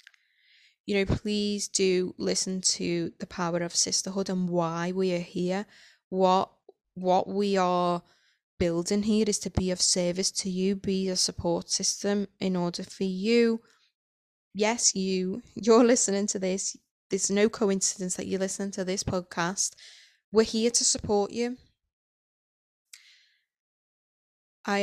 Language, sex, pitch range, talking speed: English, female, 185-215 Hz, 140 wpm